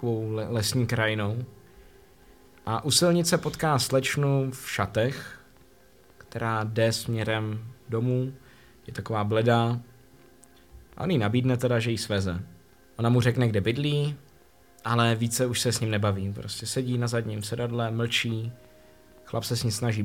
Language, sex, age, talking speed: Czech, male, 20-39, 135 wpm